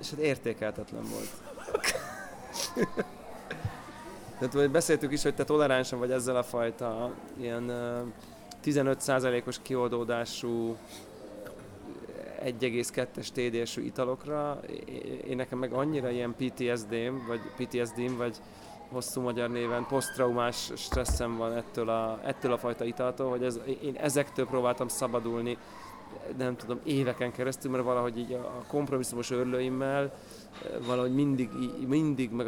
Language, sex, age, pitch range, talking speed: Hungarian, male, 30-49, 120-135 Hz, 110 wpm